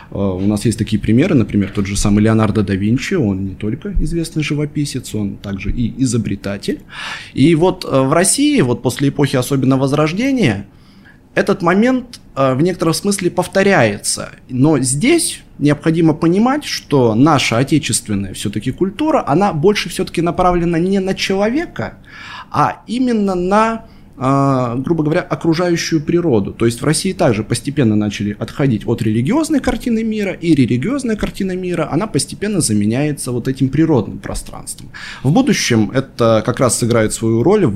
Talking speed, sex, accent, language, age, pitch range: 145 wpm, male, native, Russian, 20-39, 110-170 Hz